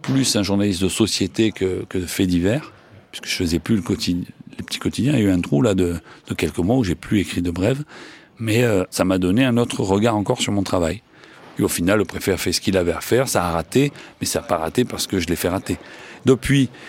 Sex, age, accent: male, 40-59, French